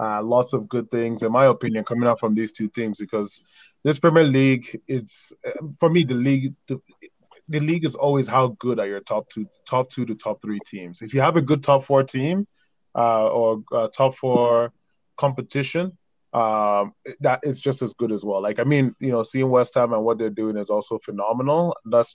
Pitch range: 110-135 Hz